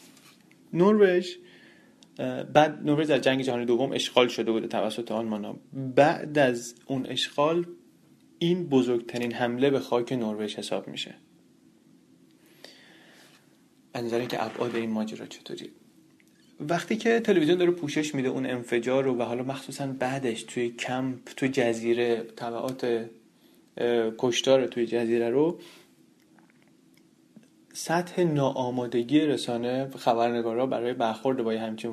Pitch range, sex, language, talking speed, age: 115-135 Hz, male, Persian, 115 wpm, 30-49